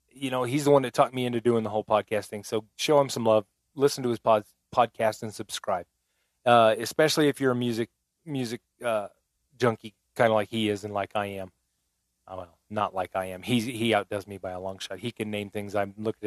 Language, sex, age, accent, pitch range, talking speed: English, male, 30-49, American, 95-120 Hz, 235 wpm